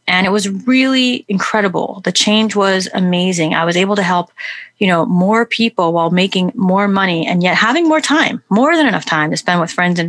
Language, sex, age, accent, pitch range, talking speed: English, female, 30-49, American, 175-215 Hz, 215 wpm